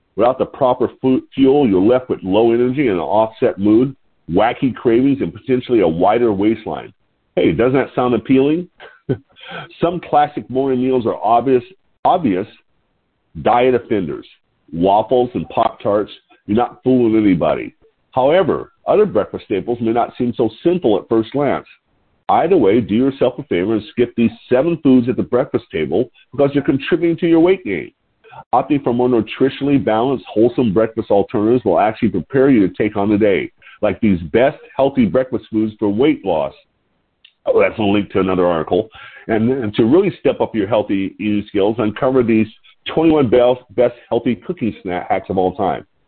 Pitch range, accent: 110-135 Hz, American